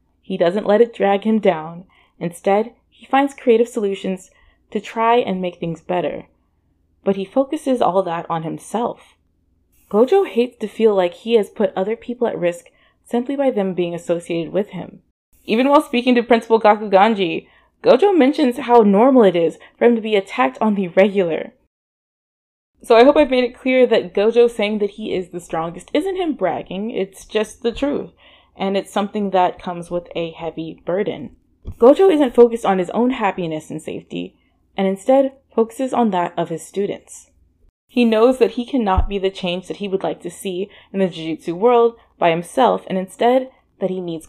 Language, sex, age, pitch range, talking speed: English, female, 20-39, 175-240 Hz, 185 wpm